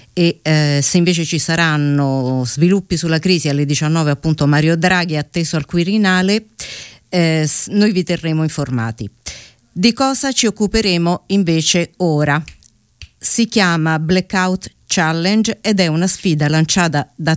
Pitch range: 145-185 Hz